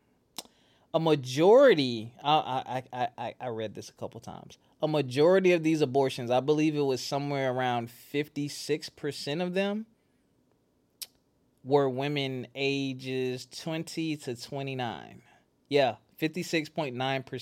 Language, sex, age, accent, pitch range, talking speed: English, male, 20-39, American, 120-150 Hz, 105 wpm